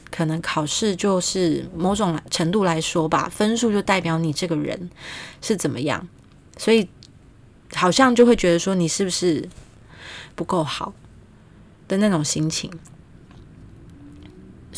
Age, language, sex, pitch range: 20-39, Chinese, female, 160-190 Hz